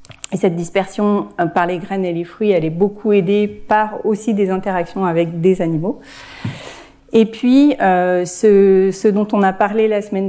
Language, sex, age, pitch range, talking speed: French, female, 40-59, 190-235 Hz, 180 wpm